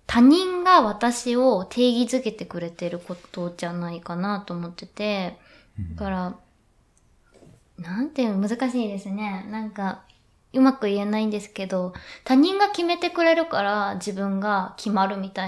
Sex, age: female, 20-39